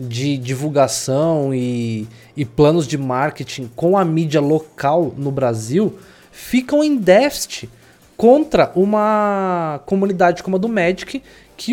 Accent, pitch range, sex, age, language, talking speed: Brazilian, 145-195 Hz, male, 20-39, Portuguese, 125 wpm